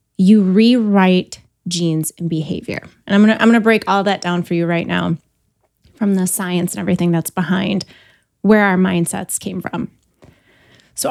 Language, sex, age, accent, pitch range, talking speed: English, female, 20-39, American, 190-240 Hz, 170 wpm